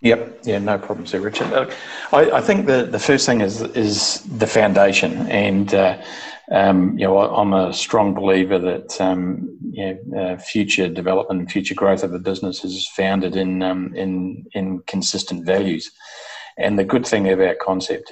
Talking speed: 180 wpm